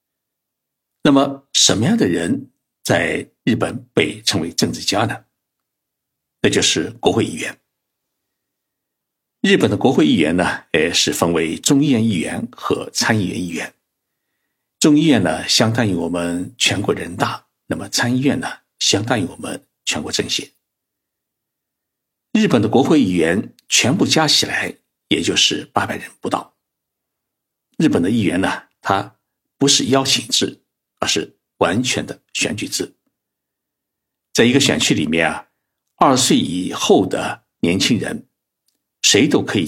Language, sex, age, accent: Chinese, male, 60-79, native